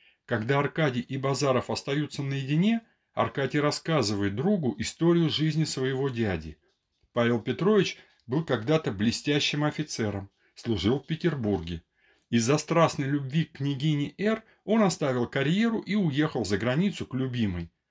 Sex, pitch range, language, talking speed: male, 115-165 Hz, Russian, 125 wpm